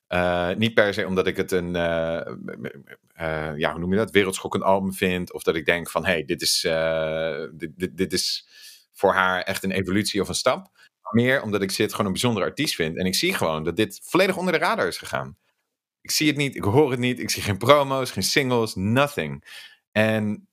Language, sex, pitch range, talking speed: Dutch, male, 90-115 Hz, 220 wpm